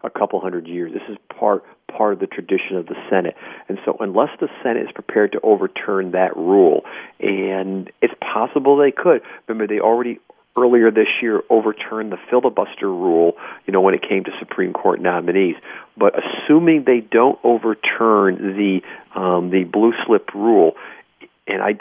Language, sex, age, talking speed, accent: English, male, 40-59, 170 wpm, American